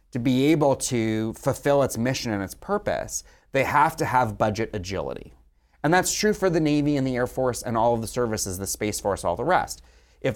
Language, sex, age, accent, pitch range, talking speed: English, male, 30-49, American, 105-140 Hz, 220 wpm